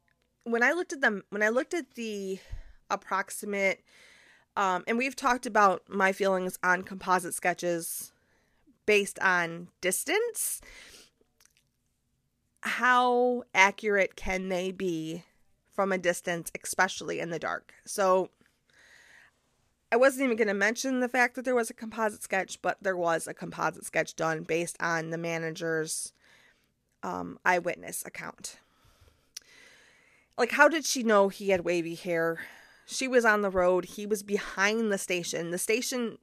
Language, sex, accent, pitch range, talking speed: English, female, American, 180-235 Hz, 140 wpm